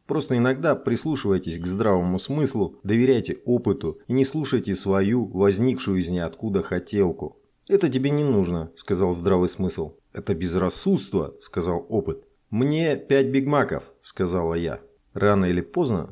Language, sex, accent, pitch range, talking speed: Russian, male, native, 95-125 Hz, 130 wpm